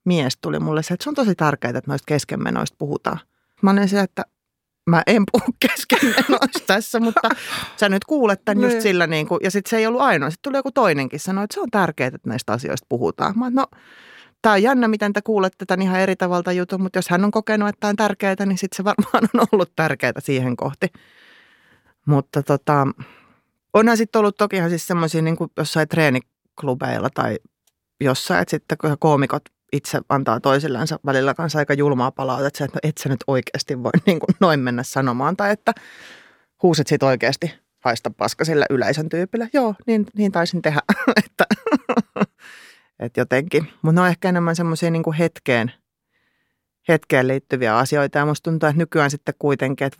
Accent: native